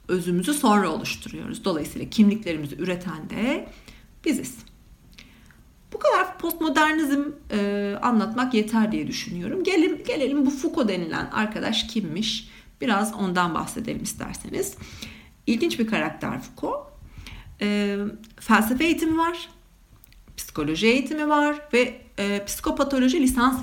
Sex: female